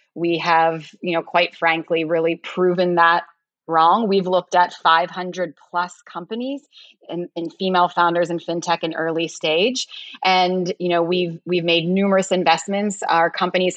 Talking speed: 150 wpm